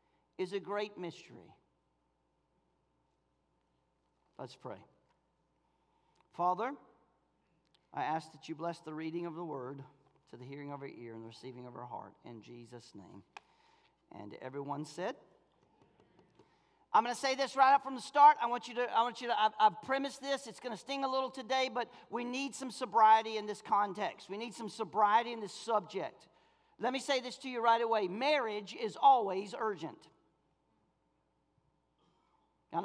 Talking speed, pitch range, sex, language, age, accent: 165 wpm, 170-275 Hz, male, English, 40-59, American